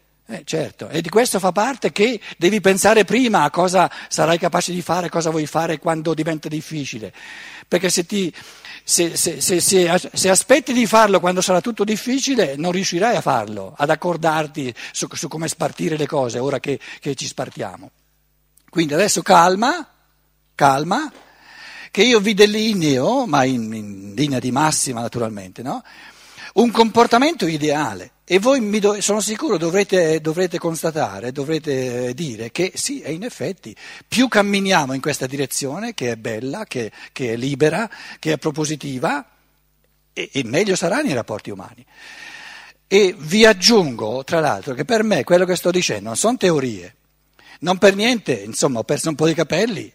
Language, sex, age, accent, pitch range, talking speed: Italian, male, 50-69, native, 145-205 Hz, 160 wpm